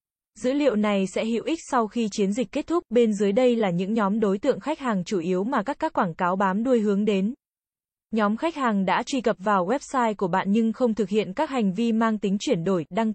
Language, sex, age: Vietnamese, female, 20-39